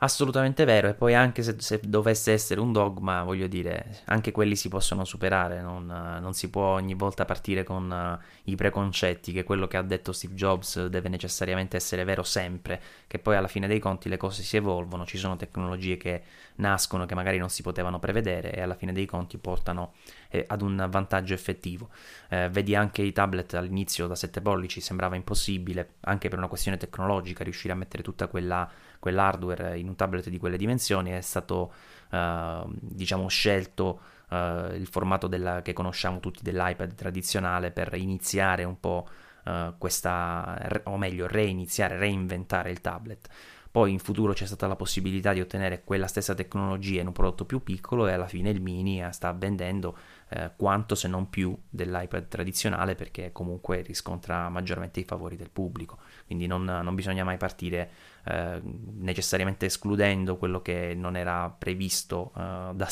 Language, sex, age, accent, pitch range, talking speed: Italian, male, 20-39, native, 90-100 Hz, 170 wpm